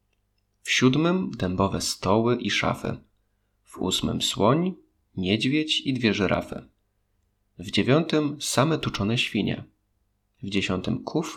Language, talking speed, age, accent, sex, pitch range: Polish, 110 wpm, 30-49, native, male, 100-125 Hz